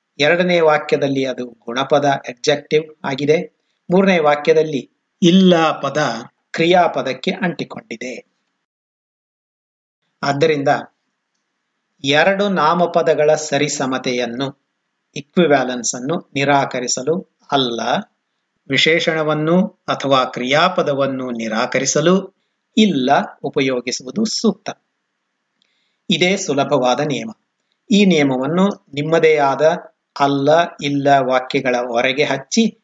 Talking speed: 70 wpm